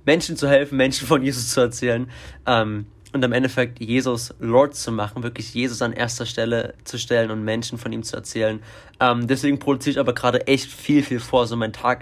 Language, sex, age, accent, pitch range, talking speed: German, male, 20-39, German, 115-140 Hz, 215 wpm